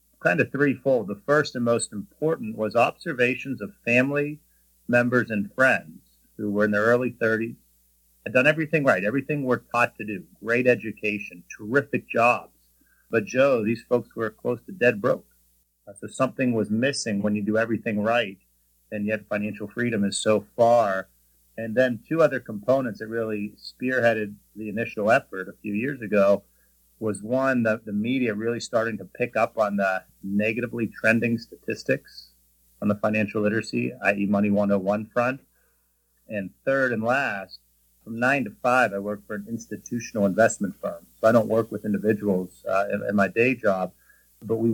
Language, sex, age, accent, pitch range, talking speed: English, male, 40-59, American, 100-120 Hz, 170 wpm